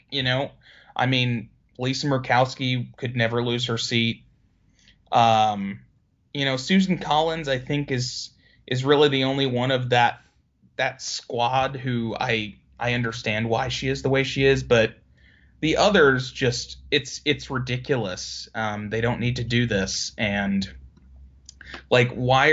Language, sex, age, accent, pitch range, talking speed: English, male, 30-49, American, 105-130 Hz, 150 wpm